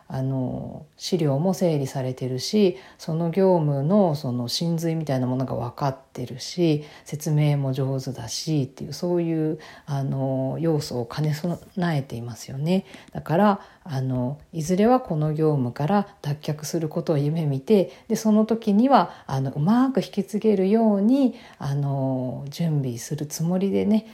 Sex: female